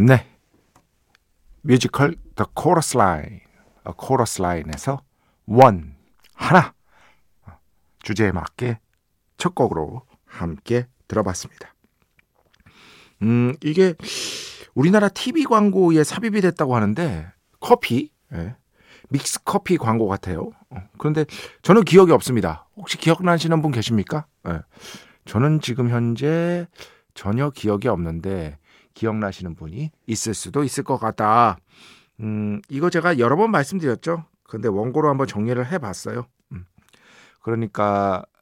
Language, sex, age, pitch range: Korean, male, 50-69, 105-170 Hz